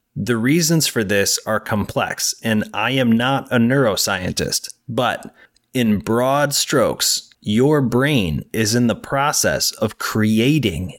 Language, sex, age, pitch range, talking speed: English, male, 30-49, 105-135 Hz, 130 wpm